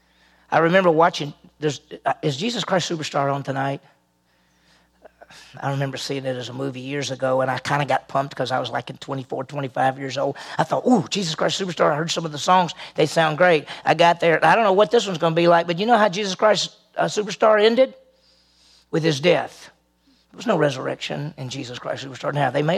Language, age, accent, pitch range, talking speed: English, 40-59, American, 120-195 Hz, 220 wpm